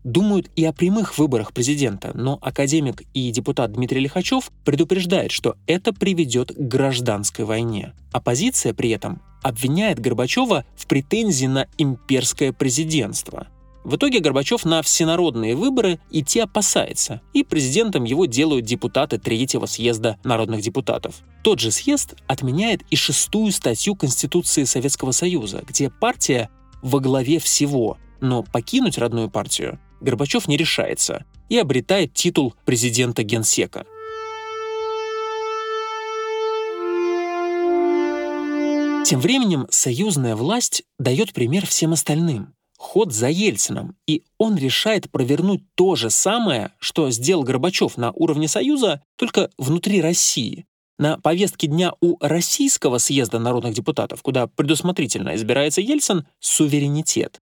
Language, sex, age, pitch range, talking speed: Russian, male, 20-39, 130-200 Hz, 120 wpm